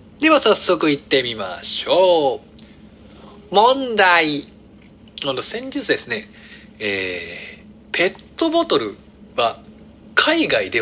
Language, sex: Japanese, male